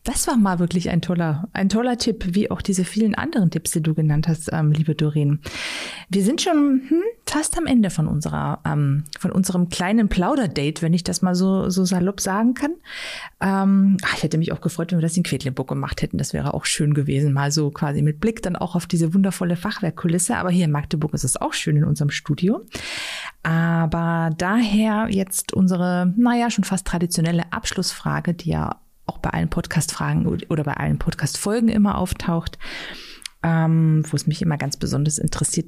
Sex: female